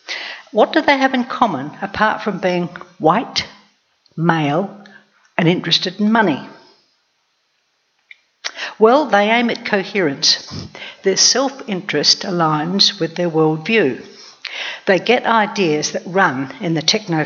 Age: 60-79